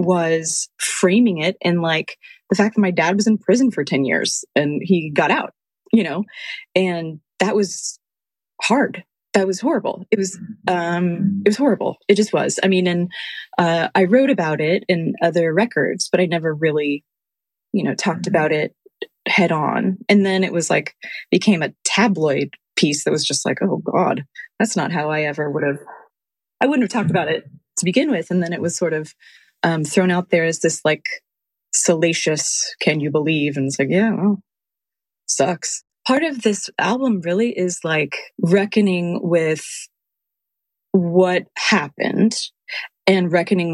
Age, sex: 20-39, female